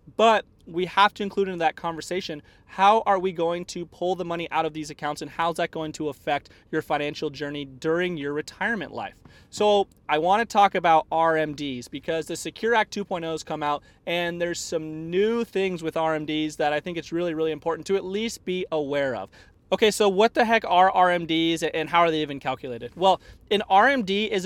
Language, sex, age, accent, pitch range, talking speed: English, male, 30-49, American, 150-195 Hz, 205 wpm